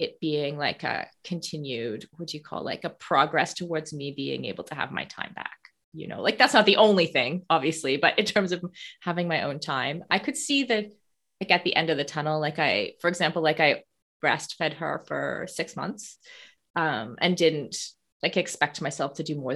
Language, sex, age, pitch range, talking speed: English, female, 20-39, 150-190 Hz, 210 wpm